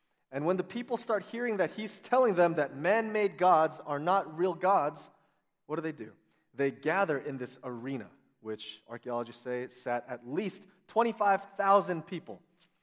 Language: English